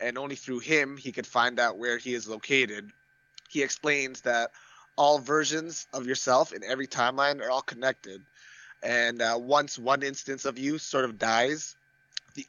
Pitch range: 120-135 Hz